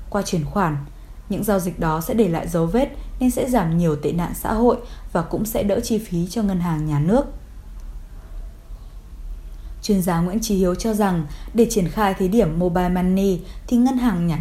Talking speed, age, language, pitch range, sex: 205 wpm, 20-39, Vietnamese, 170-225 Hz, female